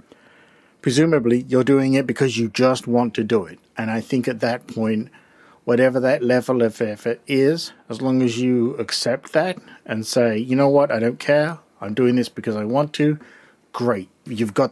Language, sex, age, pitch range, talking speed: English, male, 50-69, 120-150 Hz, 190 wpm